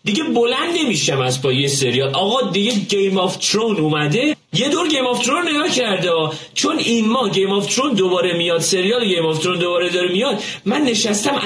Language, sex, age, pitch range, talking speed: Persian, male, 30-49, 135-225 Hz, 190 wpm